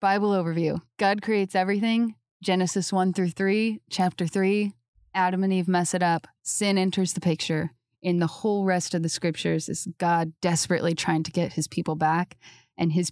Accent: American